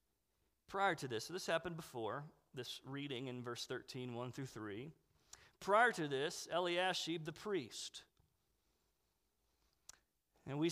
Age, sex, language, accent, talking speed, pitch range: 40-59, male, English, American, 125 wpm, 145-210 Hz